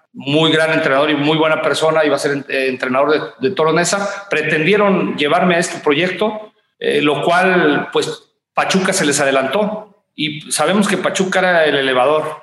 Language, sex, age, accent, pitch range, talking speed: Spanish, male, 40-59, Mexican, 145-180 Hz, 165 wpm